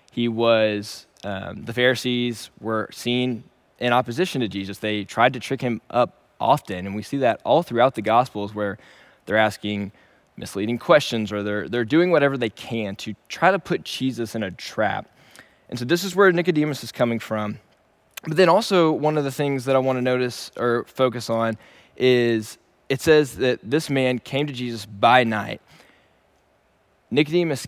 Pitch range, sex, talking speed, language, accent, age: 110-145 Hz, male, 175 wpm, English, American, 10-29